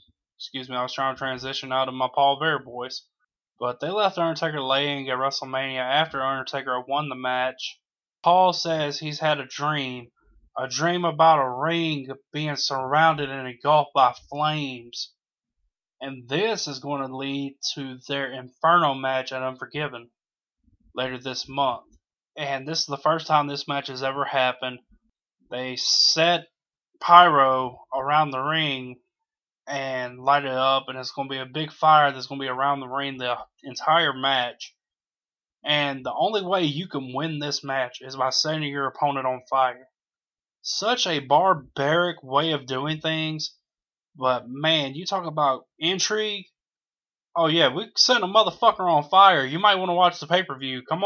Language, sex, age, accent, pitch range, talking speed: English, male, 20-39, American, 130-160 Hz, 165 wpm